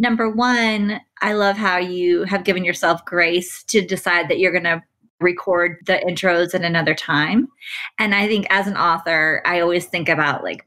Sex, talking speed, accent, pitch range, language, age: female, 185 wpm, American, 175-235 Hz, English, 30-49